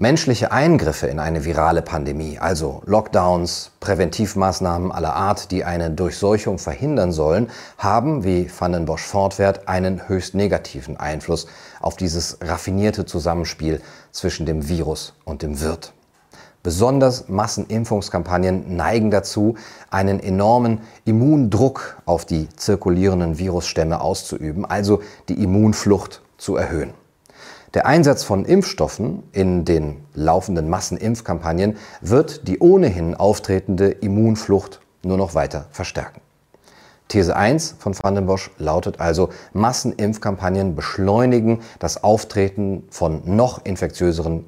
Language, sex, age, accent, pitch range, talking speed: German, male, 40-59, German, 85-110 Hz, 110 wpm